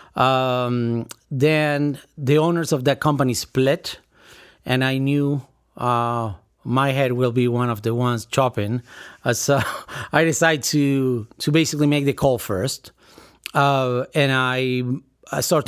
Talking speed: 140 wpm